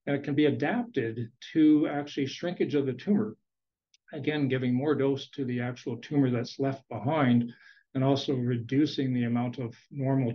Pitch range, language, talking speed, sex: 125-145 Hz, English, 170 wpm, male